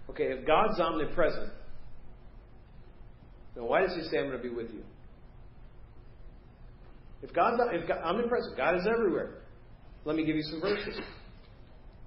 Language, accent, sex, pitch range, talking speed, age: English, American, male, 145-180 Hz, 145 wpm, 40-59